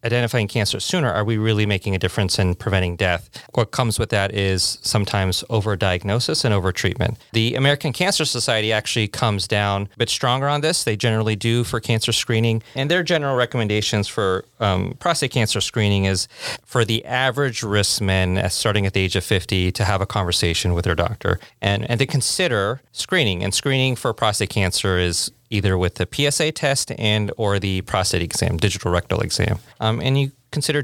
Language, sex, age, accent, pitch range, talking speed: English, male, 30-49, American, 95-120 Hz, 185 wpm